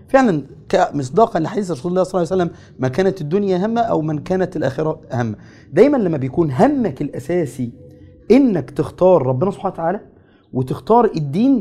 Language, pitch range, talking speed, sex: Arabic, 150-225 Hz, 155 wpm, male